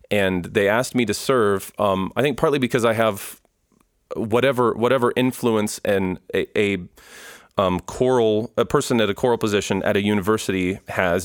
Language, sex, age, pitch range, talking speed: English, male, 30-49, 95-110 Hz, 165 wpm